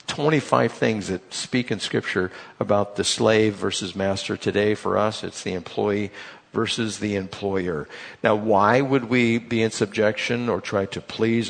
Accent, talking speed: American, 160 wpm